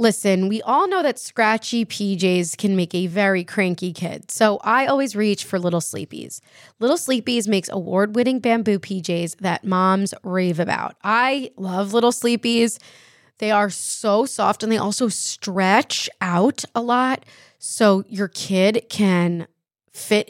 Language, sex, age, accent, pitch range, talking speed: English, female, 20-39, American, 190-240 Hz, 150 wpm